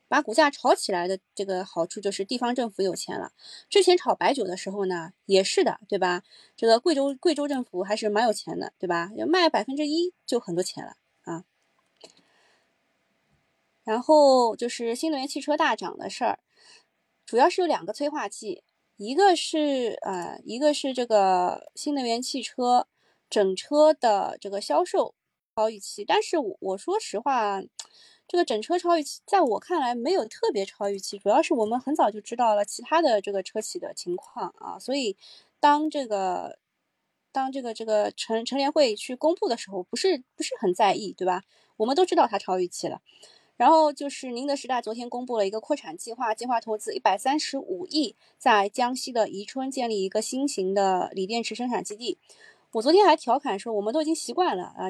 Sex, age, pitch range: female, 20-39, 205-305 Hz